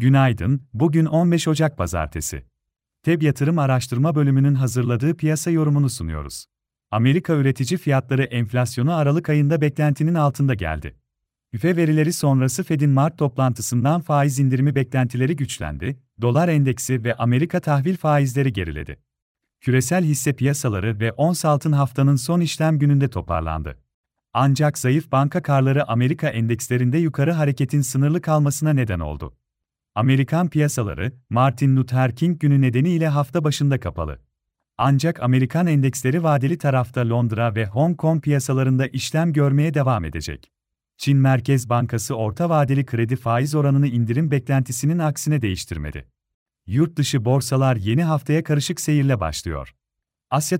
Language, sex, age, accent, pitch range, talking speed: Turkish, male, 40-59, native, 120-150 Hz, 125 wpm